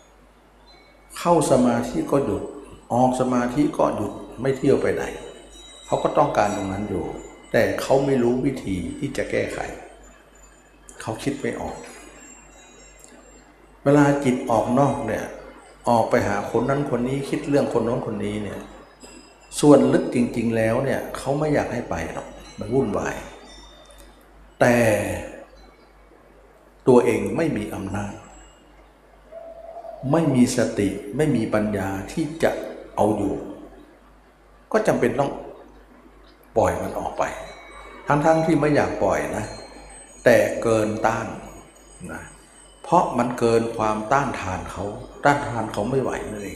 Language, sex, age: Thai, male, 60-79